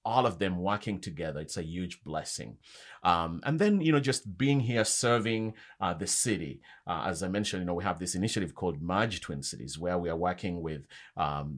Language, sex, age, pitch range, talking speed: English, male, 30-49, 85-110 Hz, 210 wpm